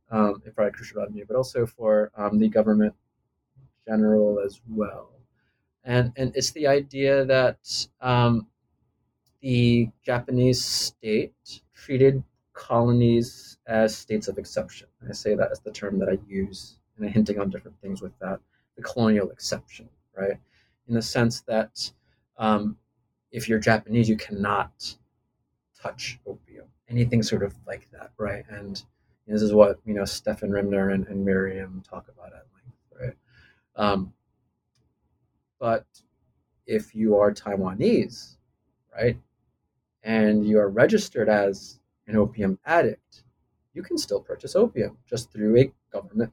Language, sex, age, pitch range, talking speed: English, male, 30-49, 105-125 Hz, 140 wpm